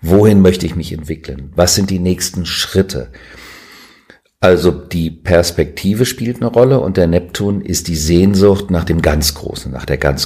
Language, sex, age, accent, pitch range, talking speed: German, male, 50-69, German, 80-105 Hz, 170 wpm